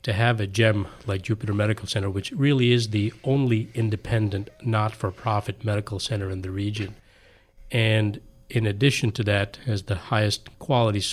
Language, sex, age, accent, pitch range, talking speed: English, male, 40-59, American, 105-120 Hz, 155 wpm